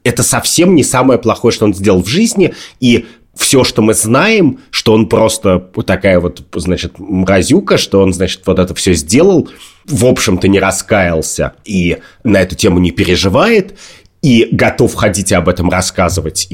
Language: Russian